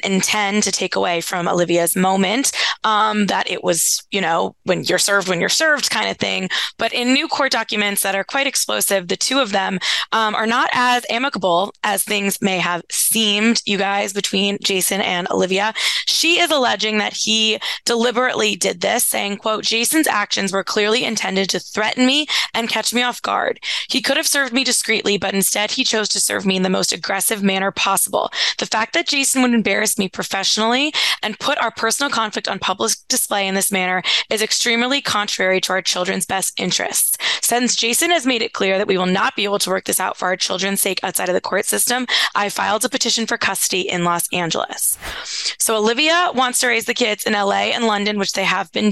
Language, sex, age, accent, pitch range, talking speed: English, female, 20-39, American, 195-245 Hz, 205 wpm